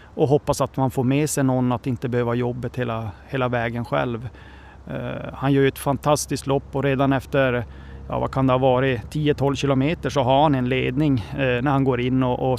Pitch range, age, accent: 125-140 Hz, 30-49, native